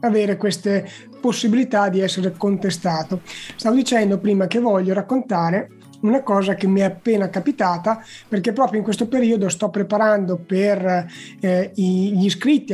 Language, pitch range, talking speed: Italian, 195-245 Hz, 140 wpm